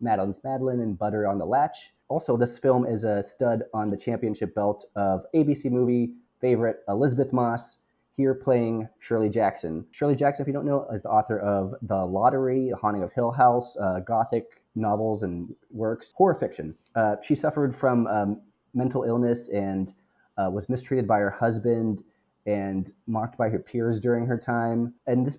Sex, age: male, 30-49